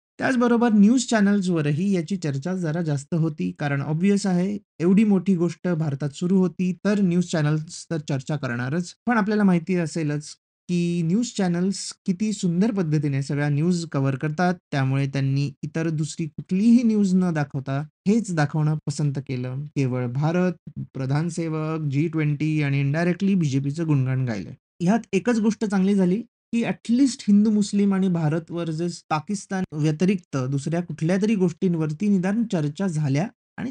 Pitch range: 145-190 Hz